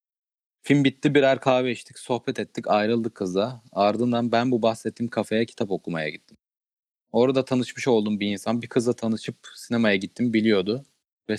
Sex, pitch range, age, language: male, 100-120 Hz, 30-49, Turkish